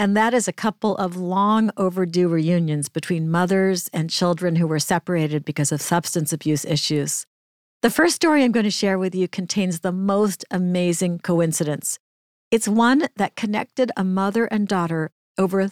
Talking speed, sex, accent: 170 wpm, female, American